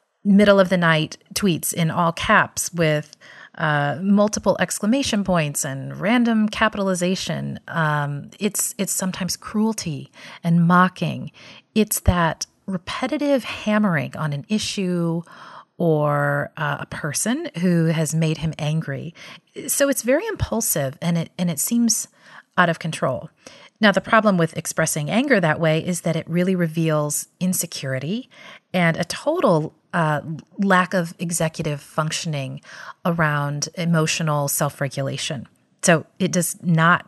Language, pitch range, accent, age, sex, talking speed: English, 155-195 Hz, American, 30-49, female, 125 wpm